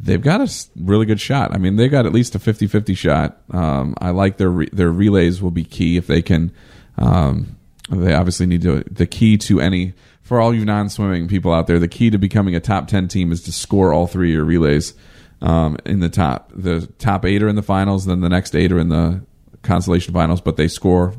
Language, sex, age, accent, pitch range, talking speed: English, male, 40-59, American, 85-95 Hz, 240 wpm